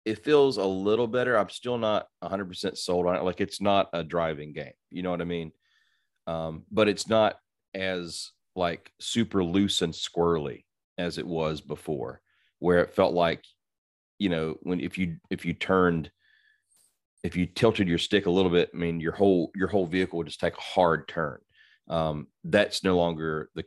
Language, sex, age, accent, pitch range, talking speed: English, male, 30-49, American, 85-100 Hz, 195 wpm